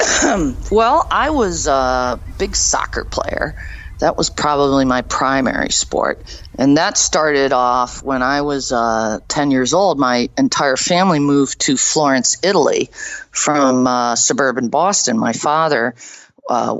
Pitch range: 125-150 Hz